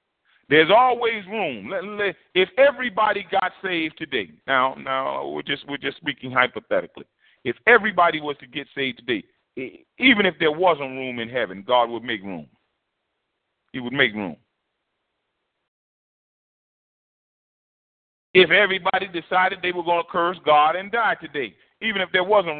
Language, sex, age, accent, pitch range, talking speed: English, male, 40-59, American, 150-215 Hz, 145 wpm